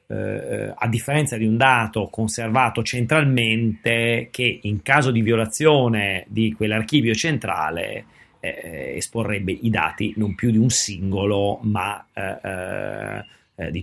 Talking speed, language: 120 wpm, Italian